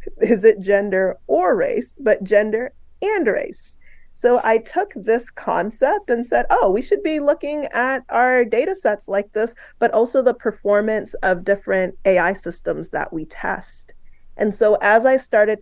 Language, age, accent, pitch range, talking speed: English, 30-49, American, 190-265 Hz, 165 wpm